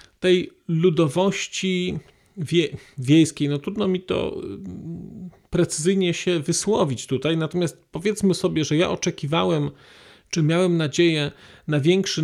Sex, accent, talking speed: male, native, 110 wpm